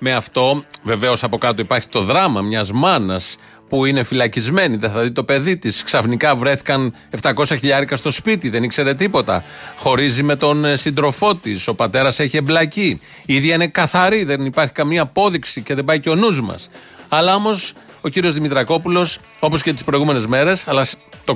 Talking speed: 175 wpm